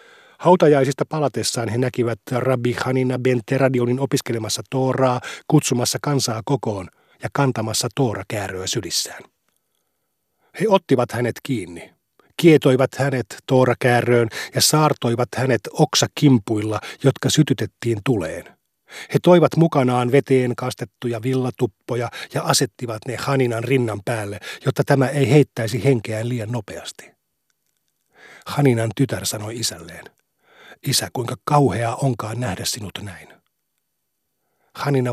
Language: Finnish